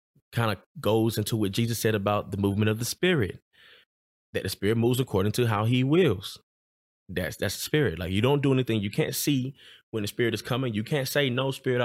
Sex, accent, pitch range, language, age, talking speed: male, American, 100-130 Hz, English, 20-39, 225 wpm